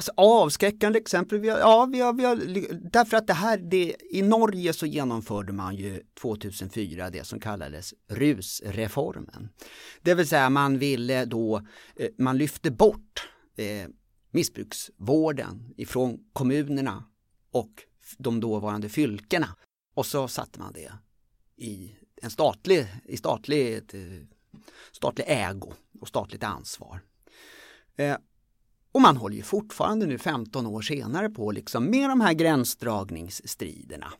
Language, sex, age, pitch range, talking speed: Swedish, male, 30-49, 105-165 Hz, 125 wpm